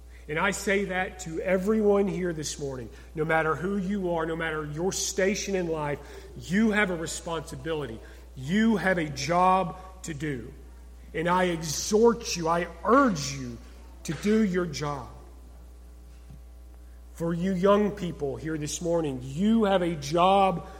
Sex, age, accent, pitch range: male, 40-59, American, 150-200 Hz